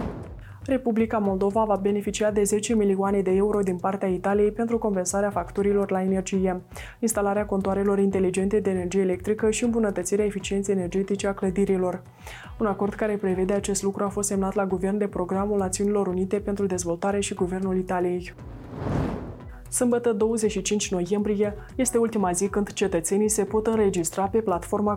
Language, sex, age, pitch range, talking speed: Romanian, female, 20-39, 185-210 Hz, 150 wpm